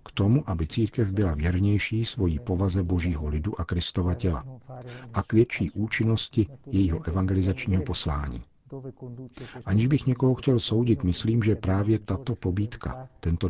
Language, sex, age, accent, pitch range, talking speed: Czech, male, 50-69, native, 90-120 Hz, 140 wpm